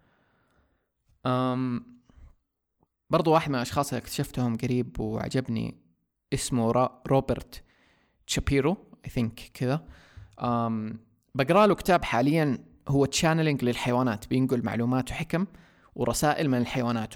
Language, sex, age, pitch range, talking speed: Arabic, male, 20-39, 115-140 Hz, 90 wpm